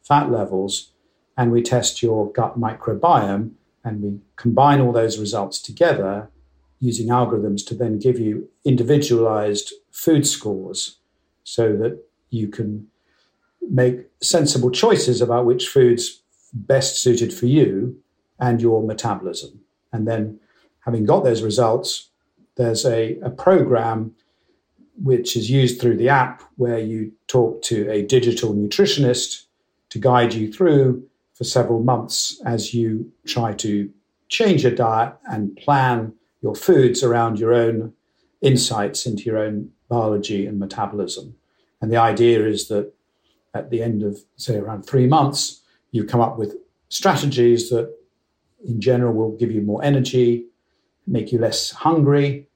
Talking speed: 140 wpm